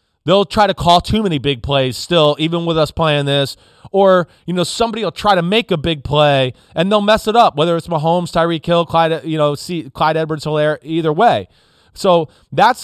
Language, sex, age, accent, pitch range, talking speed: English, male, 30-49, American, 160-210 Hz, 215 wpm